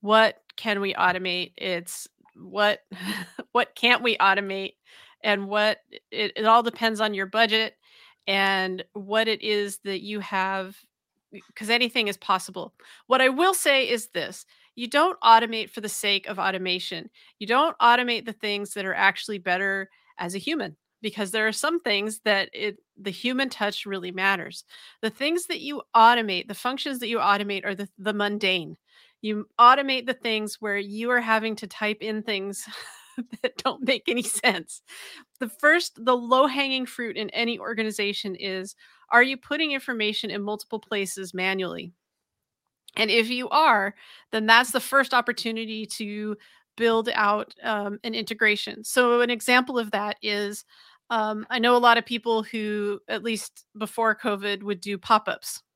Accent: American